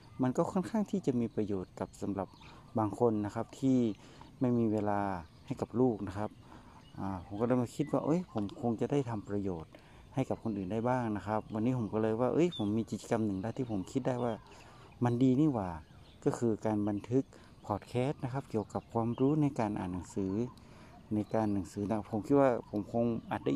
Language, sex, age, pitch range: Thai, male, 60-79, 105-125 Hz